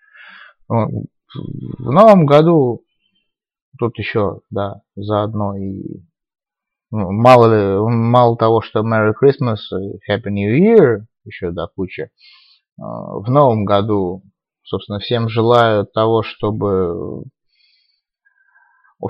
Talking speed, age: 90 wpm, 30-49